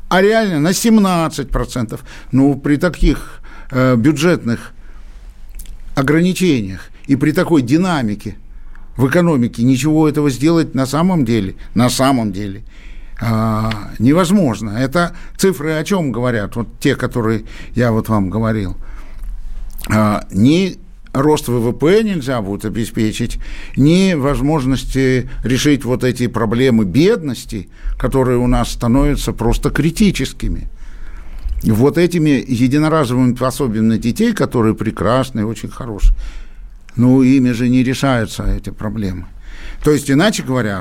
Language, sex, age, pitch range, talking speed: Russian, male, 60-79, 110-150 Hz, 115 wpm